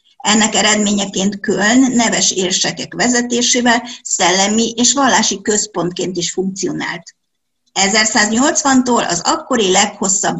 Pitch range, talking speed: 190-250 Hz, 90 wpm